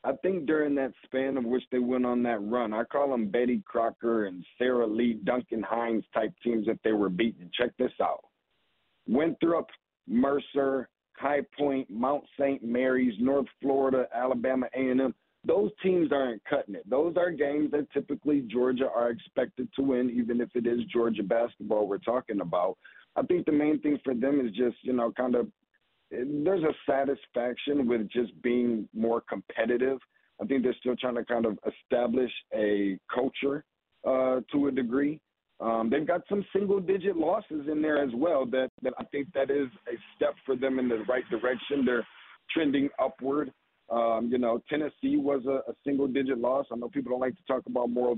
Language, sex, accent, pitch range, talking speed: English, male, American, 120-140 Hz, 185 wpm